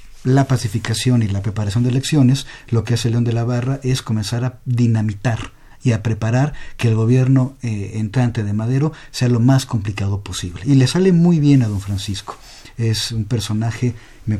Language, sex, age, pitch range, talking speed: Spanish, male, 50-69, 110-140 Hz, 190 wpm